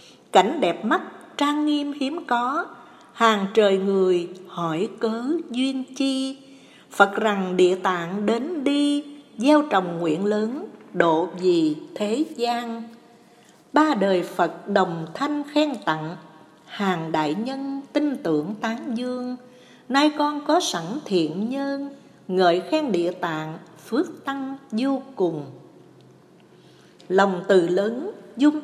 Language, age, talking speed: Vietnamese, 60-79, 125 wpm